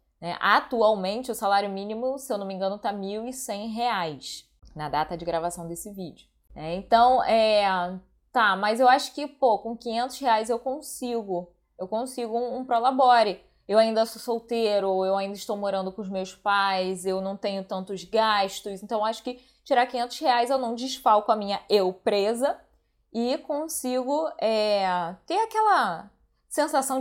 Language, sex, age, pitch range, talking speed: Portuguese, female, 20-39, 200-260 Hz, 165 wpm